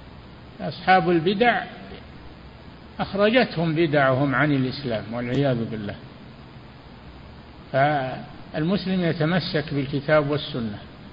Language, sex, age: Arabic, male, 60-79